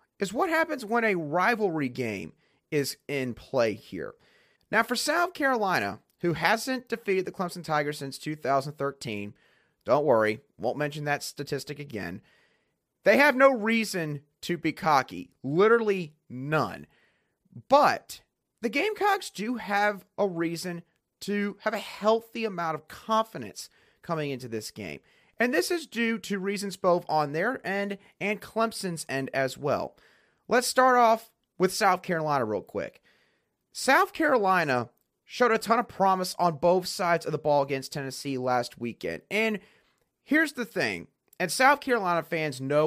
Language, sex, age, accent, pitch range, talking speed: English, male, 30-49, American, 145-225 Hz, 150 wpm